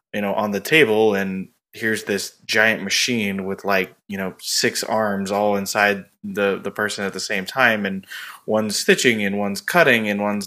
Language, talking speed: English, 190 wpm